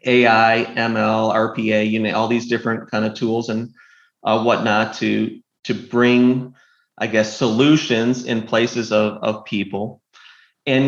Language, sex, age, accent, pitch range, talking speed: English, male, 30-49, American, 110-130 Hz, 145 wpm